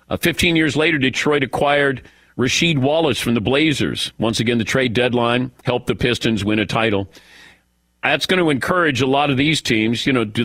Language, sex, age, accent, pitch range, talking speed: English, male, 50-69, American, 110-145 Hz, 190 wpm